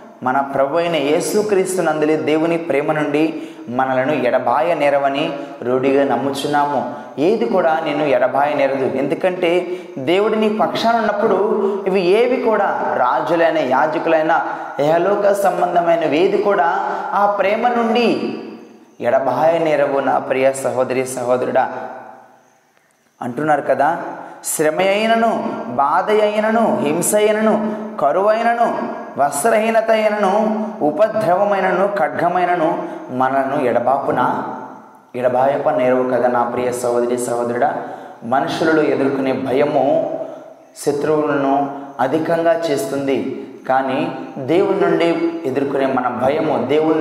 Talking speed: 85 wpm